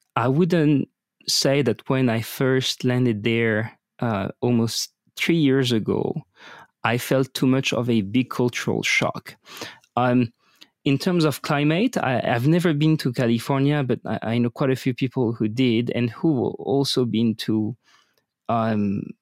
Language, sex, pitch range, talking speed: English, male, 115-145 Hz, 155 wpm